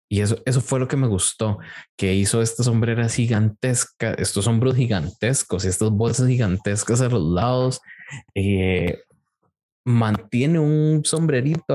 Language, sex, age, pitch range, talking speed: Spanish, male, 20-39, 100-130 Hz, 140 wpm